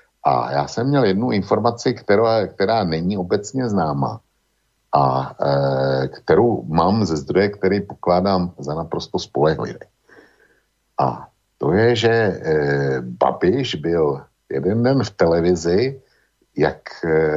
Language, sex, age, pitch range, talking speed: Slovak, male, 60-79, 75-105 Hz, 115 wpm